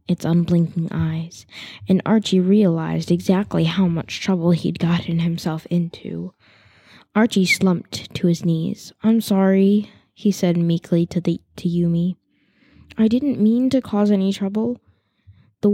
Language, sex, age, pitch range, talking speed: English, female, 10-29, 165-200 Hz, 135 wpm